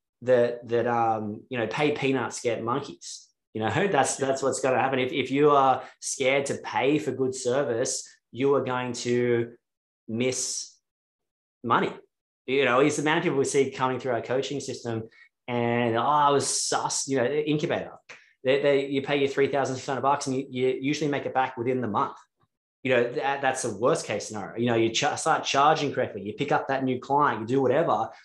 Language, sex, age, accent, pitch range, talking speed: English, male, 20-39, Australian, 120-140 Hz, 205 wpm